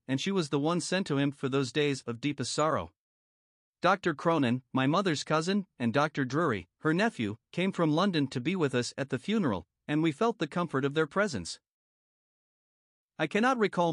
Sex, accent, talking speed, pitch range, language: male, American, 195 wpm, 130-170 Hz, English